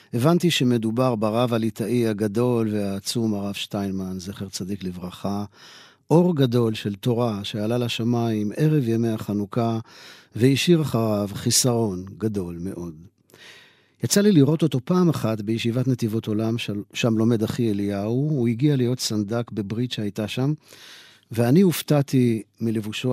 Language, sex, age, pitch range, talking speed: Hebrew, male, 50-69, 105-130 Hz, 125 wpm